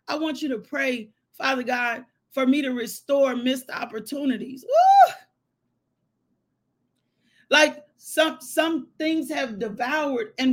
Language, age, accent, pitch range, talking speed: English, 40-59, American, 255-310 Hz, 120 wpm